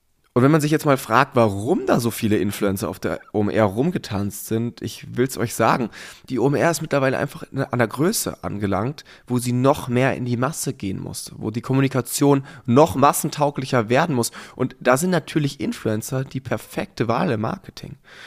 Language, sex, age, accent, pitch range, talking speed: German, male, 20-39, German, 105-135 Hz, 185 wpm